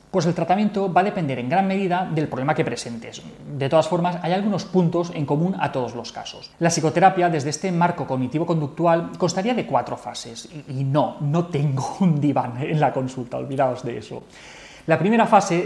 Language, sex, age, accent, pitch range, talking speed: Spanish, male, 30-49, Spanish, 145-180 Hz, 190 wpm